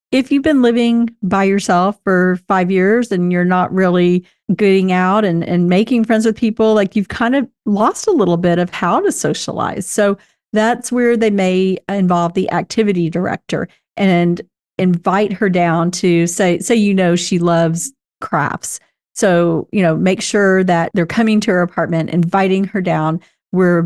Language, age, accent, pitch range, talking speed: English, 40-59, American, 175-210 Hz, 175 wpm